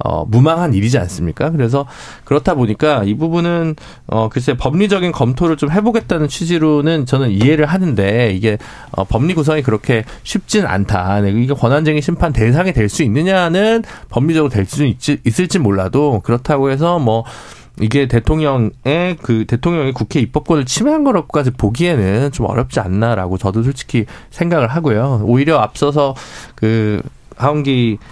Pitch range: 110-155 Hz